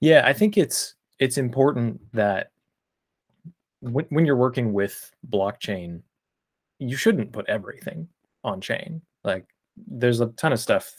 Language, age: English, 20-39